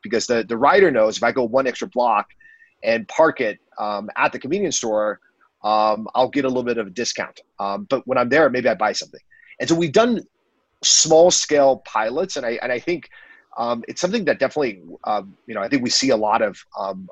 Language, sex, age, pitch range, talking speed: English, male, 30-49, 110-185 Hz, 230 wpm